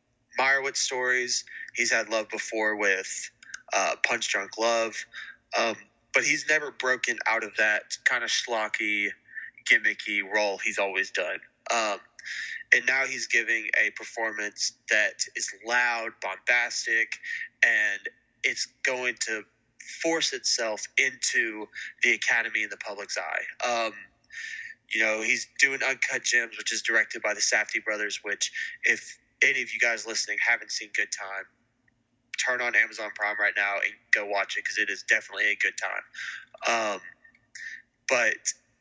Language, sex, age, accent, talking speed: English, male, 20-39, American, 145 wpm